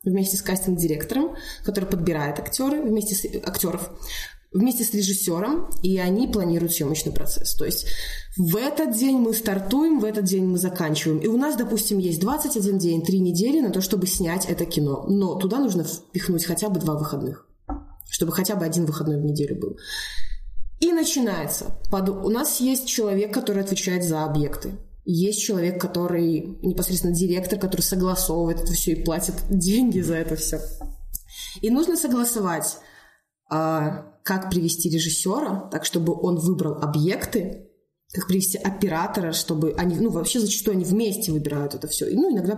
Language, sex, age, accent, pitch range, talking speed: Russian, female, 20-39, native, 165-215 Hz, 160 wpm